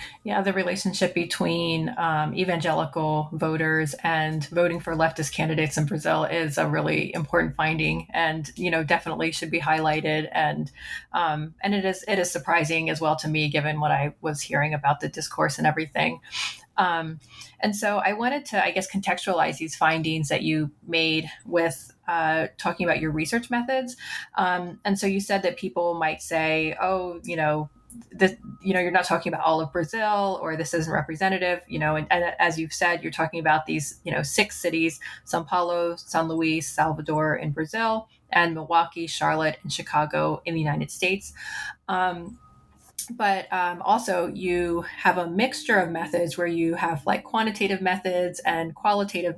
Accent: American